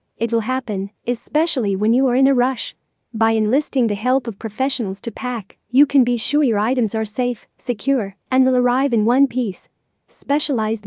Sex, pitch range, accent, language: female, 220-260 Hz, American, English